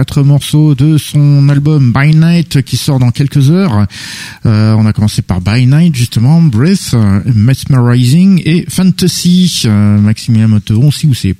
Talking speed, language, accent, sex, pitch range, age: 160 wpm, French, French, male, 100-145 Hz, 50-69